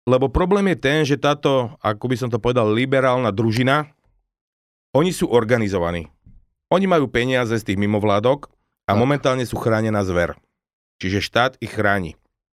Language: Slovak